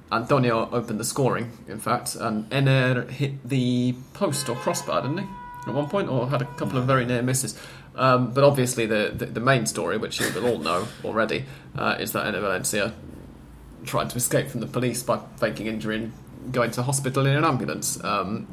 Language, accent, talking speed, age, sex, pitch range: English, British, 200 wpm, 30-49, male, 110-130 Hz